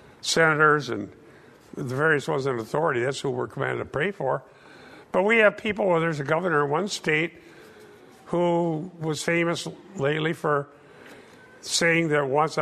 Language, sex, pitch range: English, male, 140-170 Hz